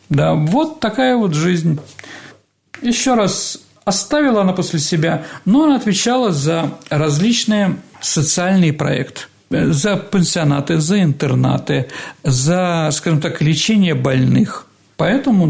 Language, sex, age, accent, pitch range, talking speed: Russian, male, 50-69, native, 150-195 Hz, 110 wpm